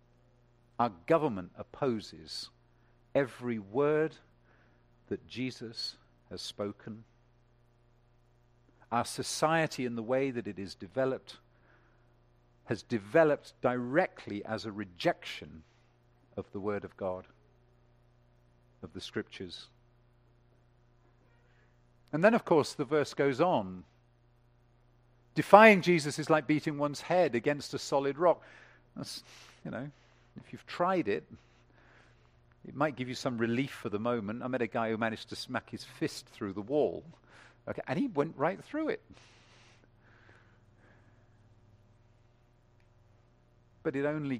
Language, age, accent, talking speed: English, 50-69, British, 120 wpm